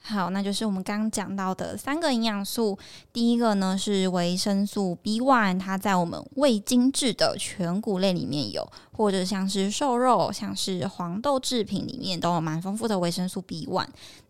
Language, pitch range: Chinese, 190-230 Hz